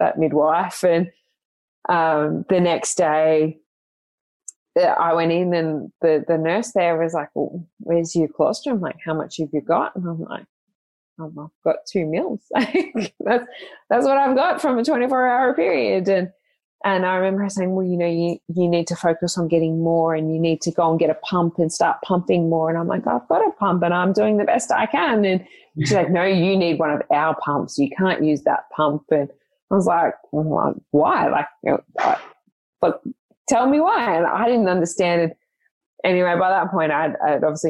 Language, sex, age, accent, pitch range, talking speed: English, female, 20-39, Australian, 155-185 Hz, 200 wpm